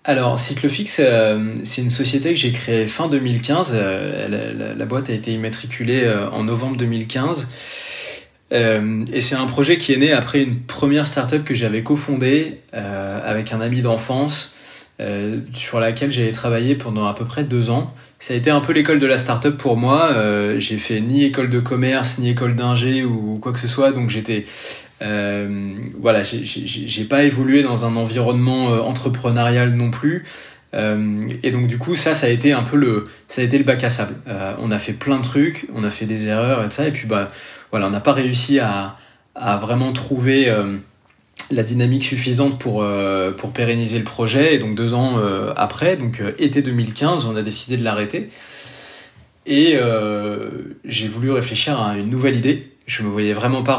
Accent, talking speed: French, 200 wpm